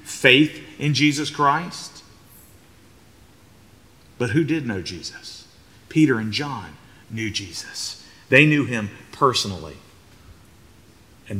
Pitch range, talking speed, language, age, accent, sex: 105-175 Hz, 100 wpm, English, 40-59, American, male